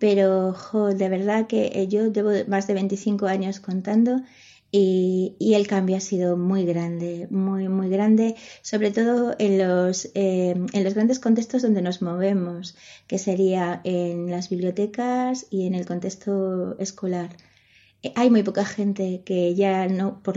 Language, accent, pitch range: Spanish, Spanish, 185-220 Hz